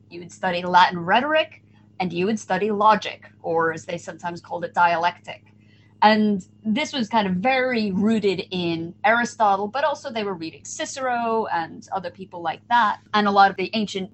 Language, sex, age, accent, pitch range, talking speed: English, female, 30-49, American, 180-240 Hz, 185 wpm